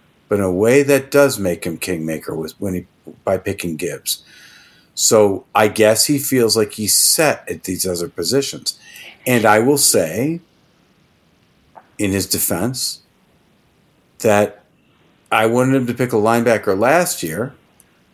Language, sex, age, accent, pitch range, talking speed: English, male, 50-69, American, 95-125 Hz, 145 wpm